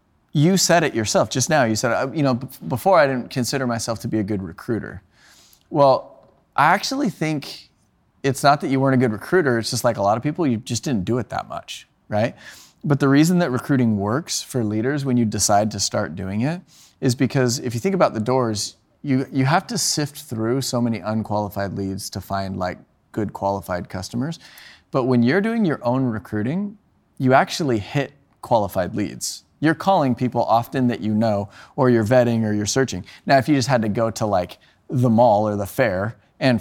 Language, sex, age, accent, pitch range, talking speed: English, male, 30-49, American, 110-140 Hz, 205 wpm